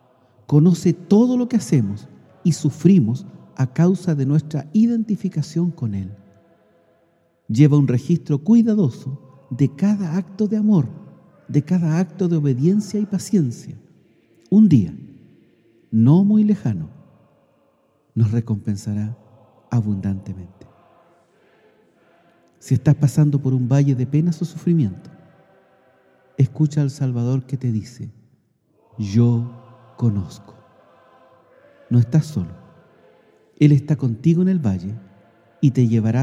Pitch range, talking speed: 115-165 Hz, 115 wpm